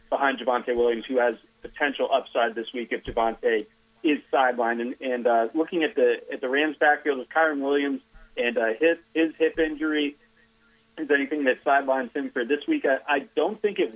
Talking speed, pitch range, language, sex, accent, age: 195 wpm, 120-145 Hz, English, male, American, 30-49